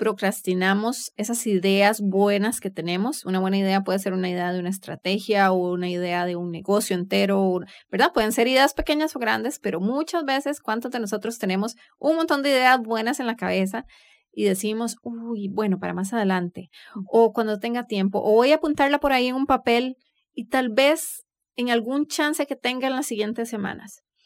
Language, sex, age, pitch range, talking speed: English, female, 30-49, 200-260 Hz, 190 wpm